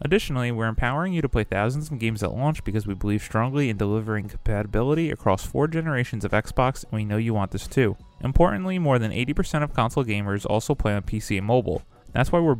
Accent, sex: American, male